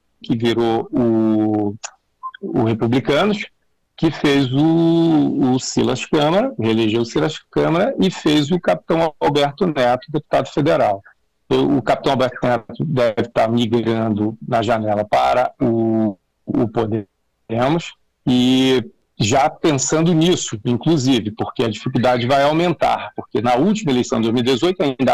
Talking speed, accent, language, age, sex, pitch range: 130 wpm, Brazilian, Portuguese, 50-69, male, 120-165 Hz